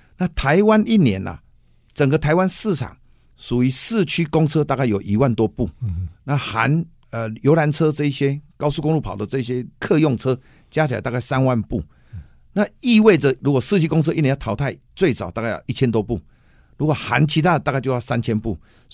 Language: Chinese